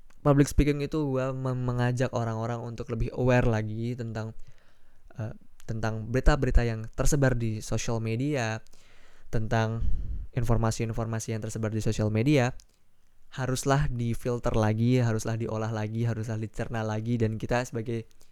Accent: native